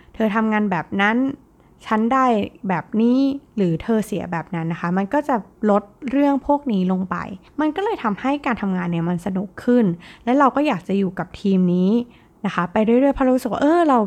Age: 20-39